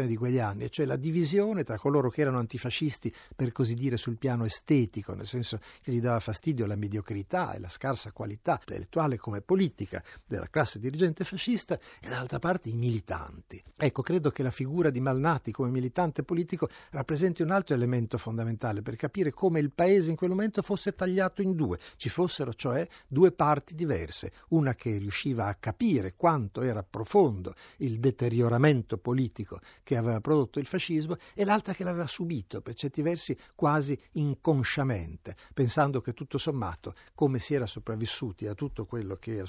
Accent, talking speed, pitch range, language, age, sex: native, 175 wpm, 110-150 Hz, Italian, 60-79, male